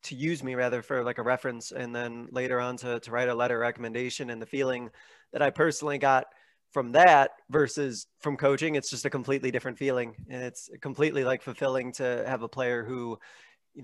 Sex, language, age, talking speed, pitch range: male, English, 20-39, 210 wpm, 125-145 Hz